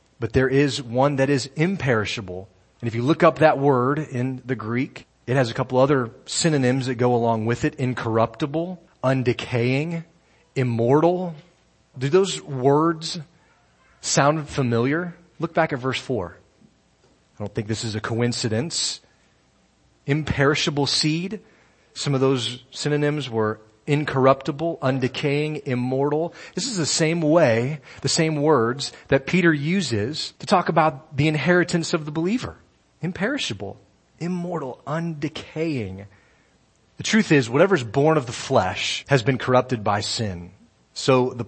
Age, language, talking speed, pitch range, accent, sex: 40-59, English, 140 wpm, 115-155 Hz, American, male